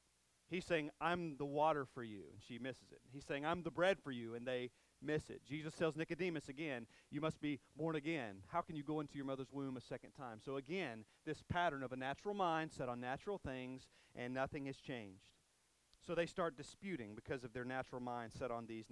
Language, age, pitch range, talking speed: English, 40-59, 120-160 Hz, 220 wpm